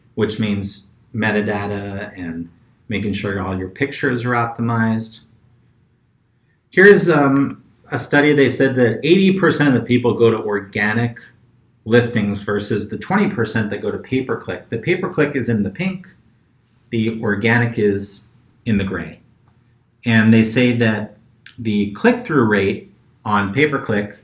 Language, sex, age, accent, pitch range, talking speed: English, male, 40-59, American, 110-130 Hz, 135 wpm